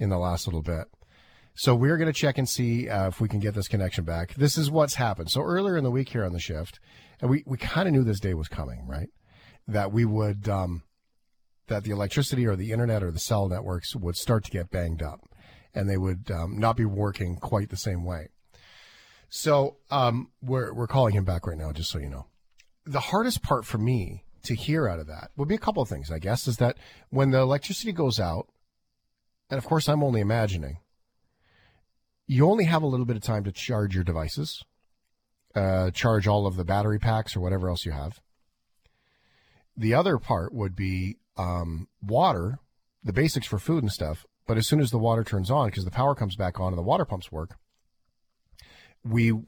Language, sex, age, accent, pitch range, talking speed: English, male, 40-59, American, 95-125 Hz, 210 wpm